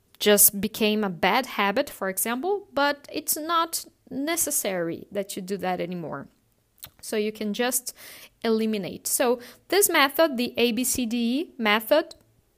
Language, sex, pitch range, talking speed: English, female, 205-270 Hz, 130 wpm